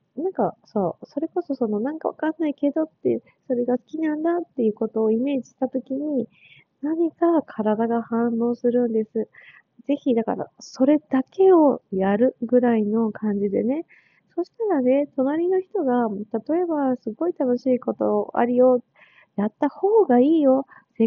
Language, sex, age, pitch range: Japanese, female, 20-39, 220-285 Hz